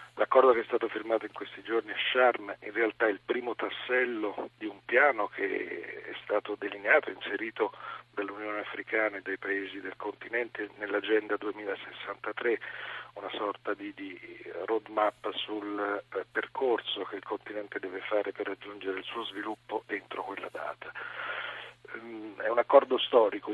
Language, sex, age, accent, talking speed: Italian, male, 40-59, native, 145 wpm